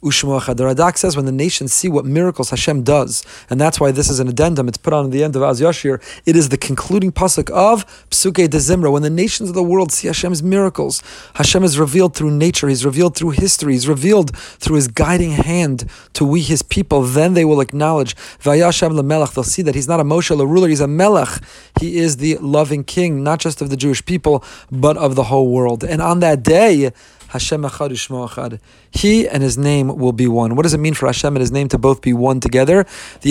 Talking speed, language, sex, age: 225 wpm, English, male, 30-49